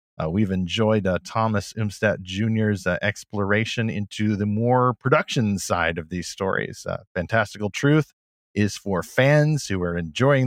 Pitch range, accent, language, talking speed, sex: 95-120 Hz, American, English, 150 wpm, male